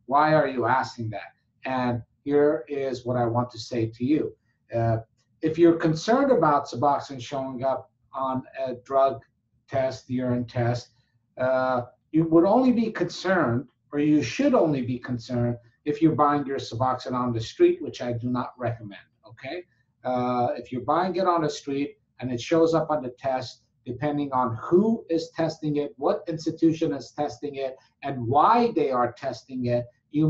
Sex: male